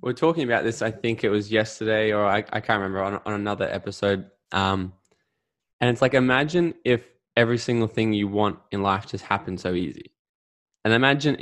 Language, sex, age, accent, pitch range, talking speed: English, male, 10-29, Australian, 105-135 Hz, 195 wpm